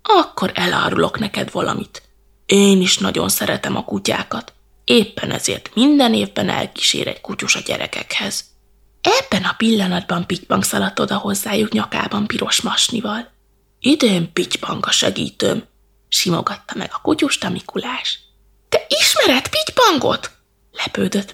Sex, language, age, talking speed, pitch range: female, Hungarian, 20-39, 120 wpm, 190-255 Hz